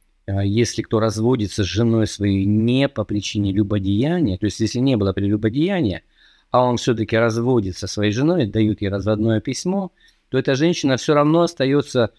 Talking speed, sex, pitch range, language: 160 wpm, male, 105-140 Hz, Russian